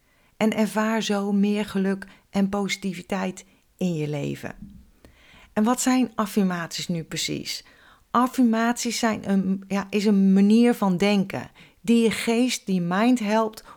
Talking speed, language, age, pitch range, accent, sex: 140 wpm, Dutch, 40-59, 195-225 Hz, Dutch, female